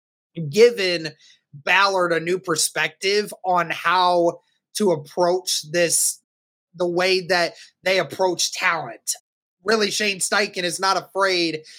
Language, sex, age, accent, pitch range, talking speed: English, male, 20-39, American, 160-190 Hz, 110 wpm